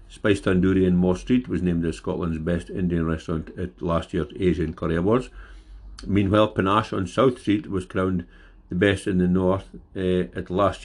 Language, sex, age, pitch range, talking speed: English, male, 60-79, 85-95 Hz, 185 wpm